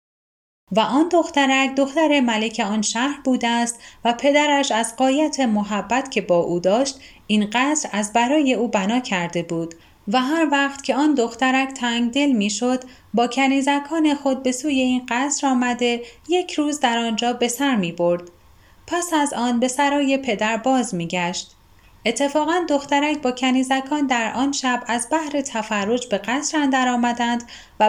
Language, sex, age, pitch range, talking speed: Persian, female, 10-29, 220-285 Hz, 160 wpm